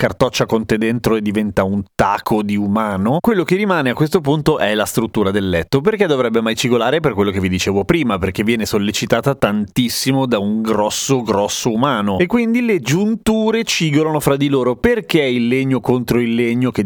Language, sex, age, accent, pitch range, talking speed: Italian, male, 30-49, native, 110-155 Hz, 195 wpm